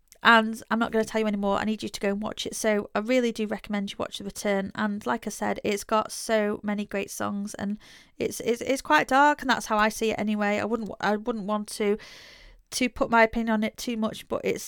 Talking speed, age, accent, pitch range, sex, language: 260 wpm, 30-49, British, 205-230 Hz, female, English